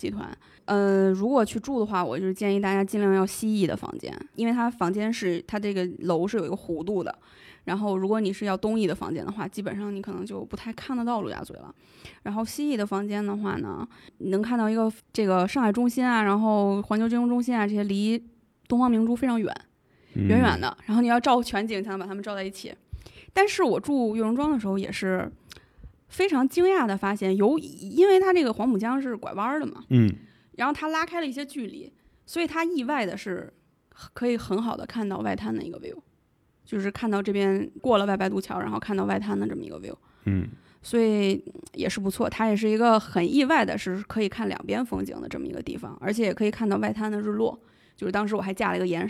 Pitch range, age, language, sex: 195-240 Hz, 20-39, Chinese, female